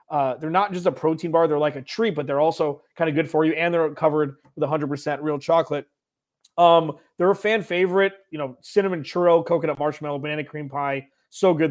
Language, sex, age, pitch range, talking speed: English, male, 30-49, 145-170 Hz, 215 wpm